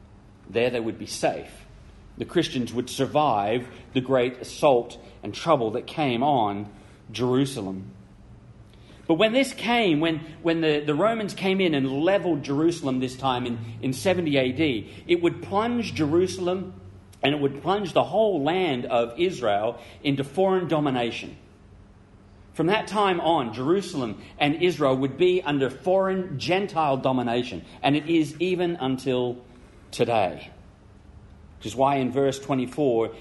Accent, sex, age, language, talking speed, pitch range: Australian, male, 40-59, English, 145 wpm, 110-145 Hz